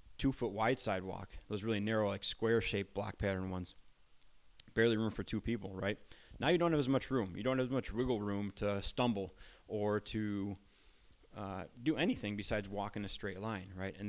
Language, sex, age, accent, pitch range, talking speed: English, male, 30-49, American, 95-110 Hz, 205 wpm